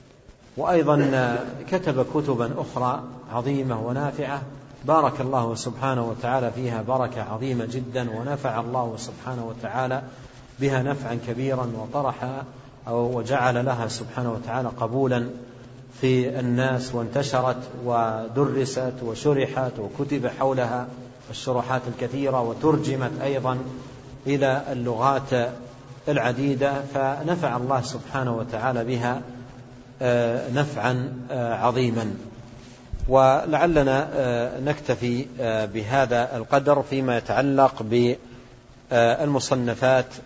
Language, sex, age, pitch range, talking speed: Arabic, male, 50-69, 120-135 Hz, 85 wpm